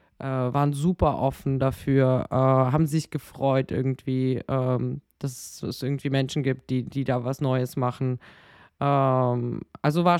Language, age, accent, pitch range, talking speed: German, 20-39, German, 130-155 Hz, 125 wpm